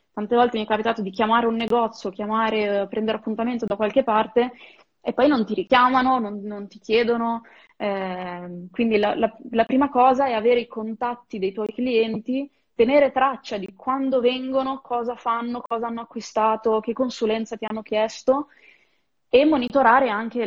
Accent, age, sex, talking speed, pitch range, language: native, 20-39, female, 165 wpm, 210-245 Hz, Italian